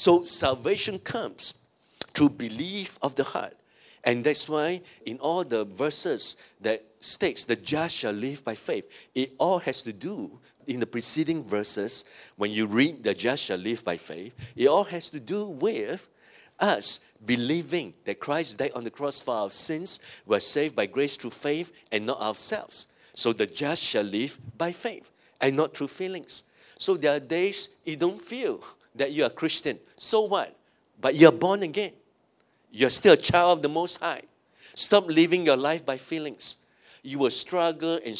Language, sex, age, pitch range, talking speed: English, male, 50-69, 130-175 Hz, 180 wpm